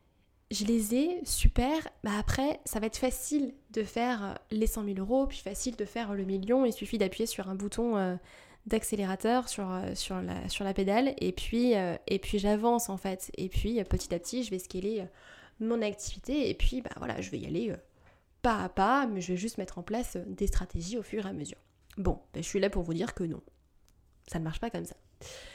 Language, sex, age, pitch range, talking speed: French, female, 20-39, 195-240 Hz, 220 wpm